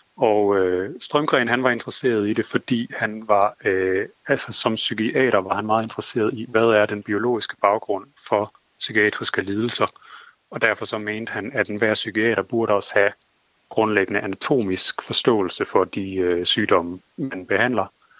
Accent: native